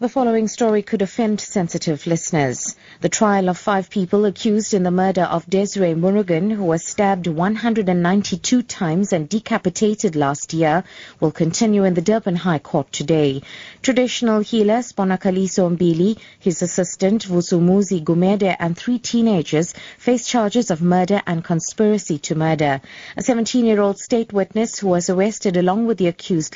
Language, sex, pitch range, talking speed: English, female, 170-220 Hz, 150 wpm